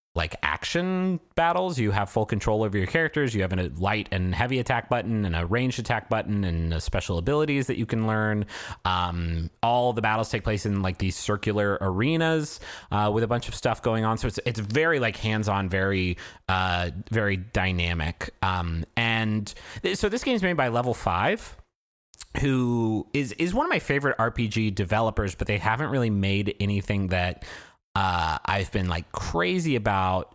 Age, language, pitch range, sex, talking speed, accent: 30-49, English, 95-120 Hz, male, 185 wpm, American